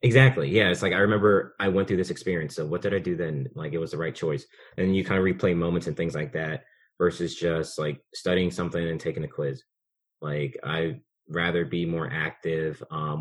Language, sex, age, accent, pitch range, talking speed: English, male, 30-49, American, 80-100 Hz, 225 wpm